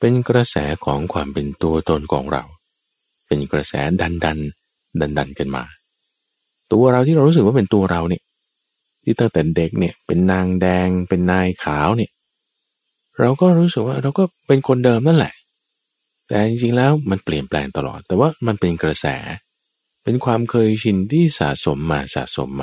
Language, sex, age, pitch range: Thai, male, 20-39, 75-120 Hz